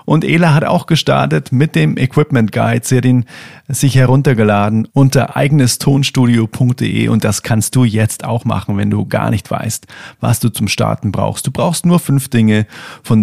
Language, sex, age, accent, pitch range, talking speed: German, male, 40-59, German, 105-125 Hz, 170 wpm